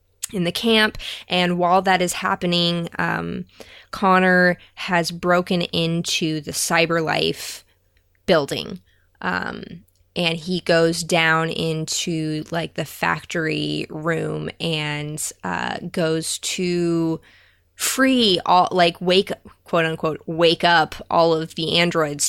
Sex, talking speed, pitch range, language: female, 115 wpm, 150-175 Hz, English